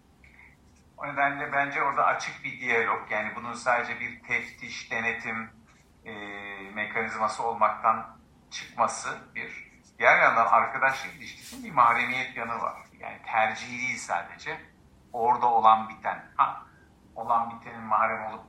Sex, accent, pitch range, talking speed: male, native, 105-135 Hz, 125 wpm